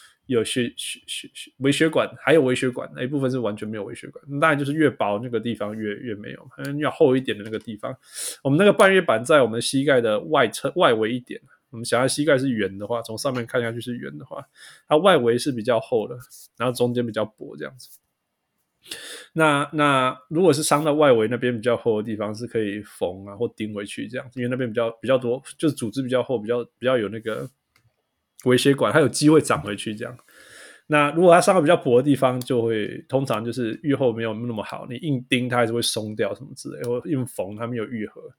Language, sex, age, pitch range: Chinese, male, 20-39, 115-150 Hz